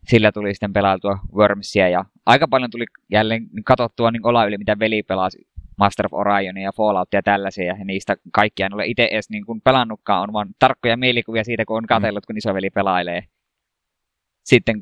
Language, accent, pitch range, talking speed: Finnish, native, 95-115 Hz, 180 wpm